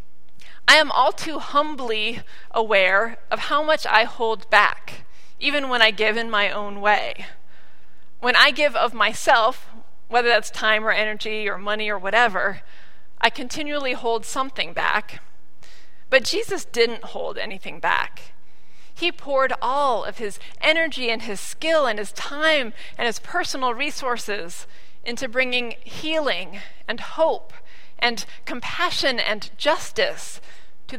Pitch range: 205-275 Hz